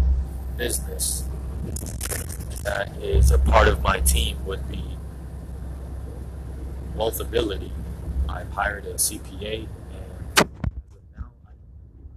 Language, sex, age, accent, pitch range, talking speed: English, male, 30-49, American, 65-80 Hz, 90 wpm